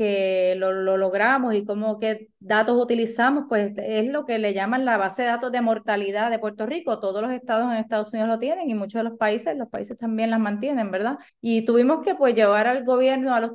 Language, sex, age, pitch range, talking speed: English, female, 20-39, 195-250 Hz, 230 wpm